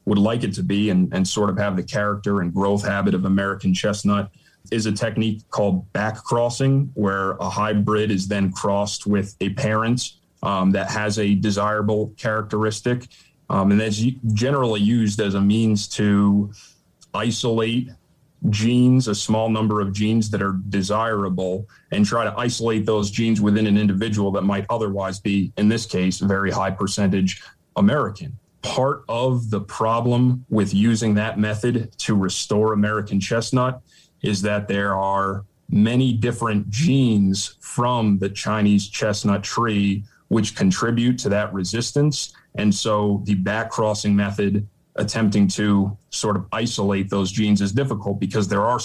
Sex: male